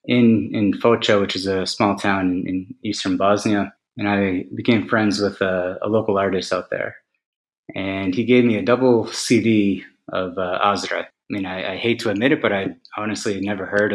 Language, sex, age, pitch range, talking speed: English, male, 20-39, 95-110 Hz, 195 wpm